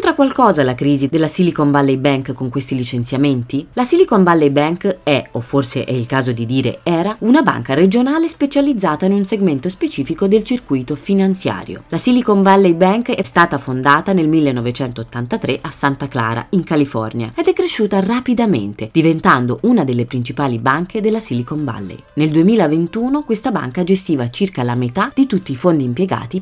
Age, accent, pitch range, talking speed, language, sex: 20-39, native, 140-220 Hz, 165 wpm, Italian, female